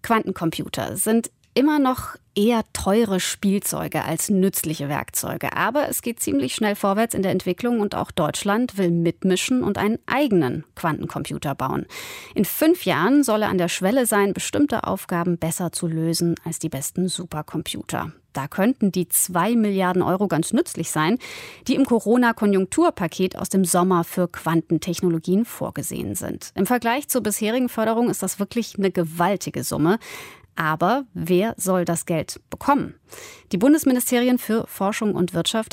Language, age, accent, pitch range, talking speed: German, 30-49, German, 170-230 Hz, 150 wpm